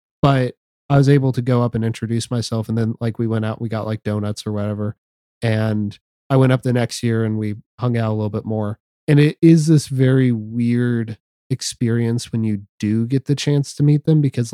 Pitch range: 105-130 Hz